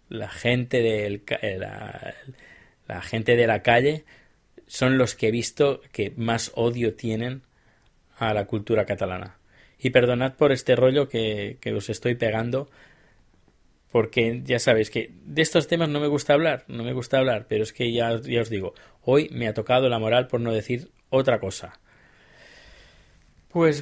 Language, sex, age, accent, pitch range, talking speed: Spanish, male, 20-39, Spanish, 110-125 Hz, 160 wpm